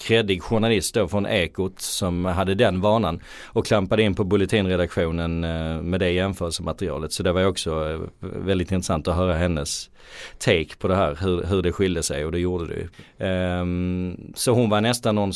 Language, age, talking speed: Swedish, 30-49, 175 wpm